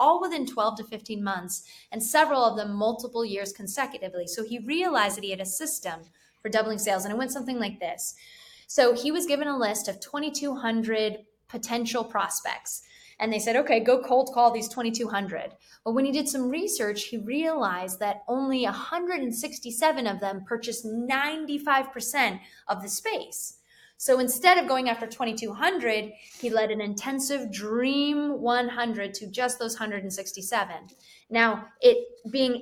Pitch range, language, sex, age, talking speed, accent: 220-275 Hz, English, female, 20-39, 160 wpm, American